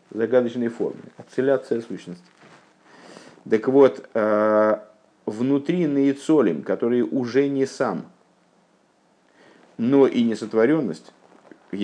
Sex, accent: male, native